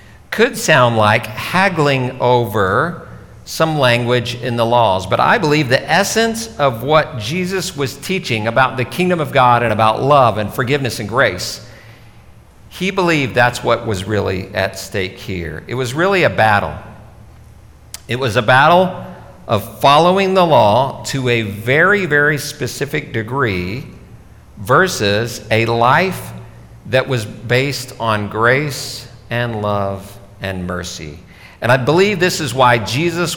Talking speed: 140 wpm